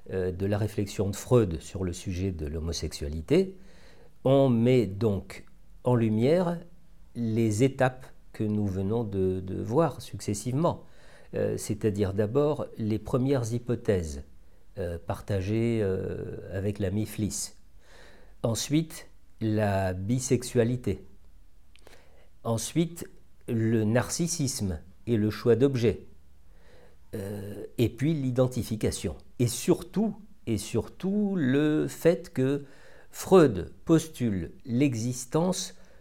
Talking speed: 100 wpm